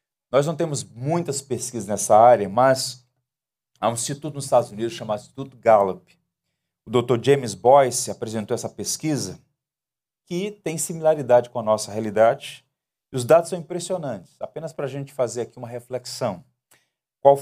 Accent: Brazilian